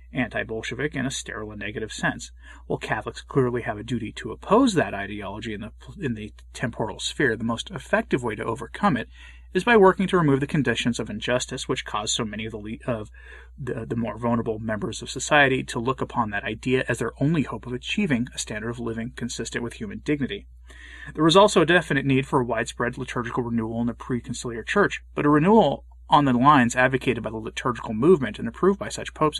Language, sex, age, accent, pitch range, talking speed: English, male, 30-49, American, 110-135 Hz, 210 wpm